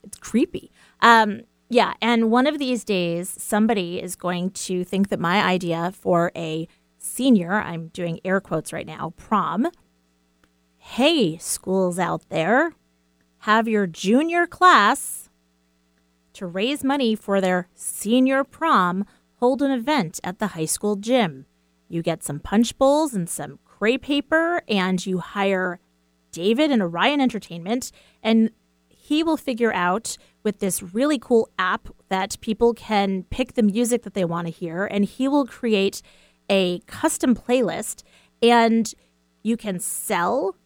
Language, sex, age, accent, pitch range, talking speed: English, female, 30-49, American, 180-245 Hz, 145 wpm